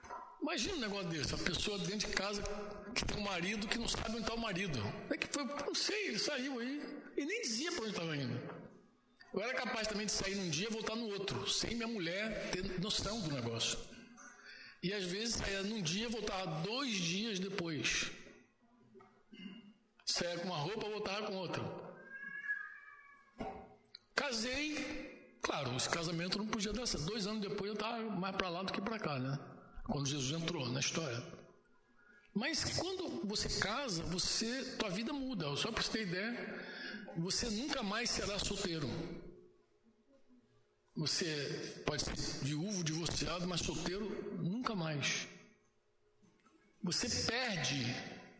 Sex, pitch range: male, 180-225 Hz